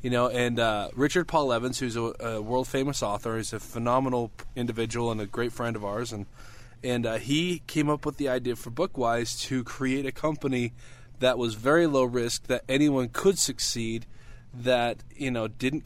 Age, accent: 20-39, American